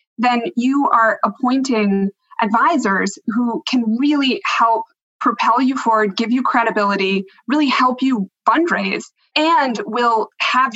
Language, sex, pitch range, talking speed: English, female, 200-245 Hz, 125 wpm